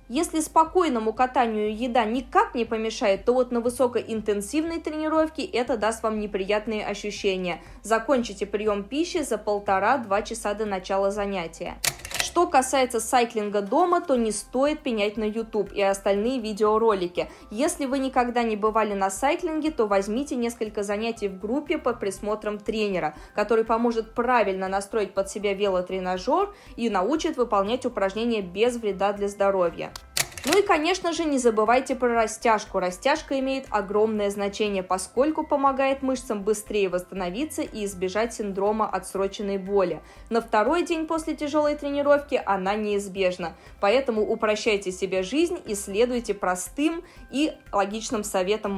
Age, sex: 20-39, female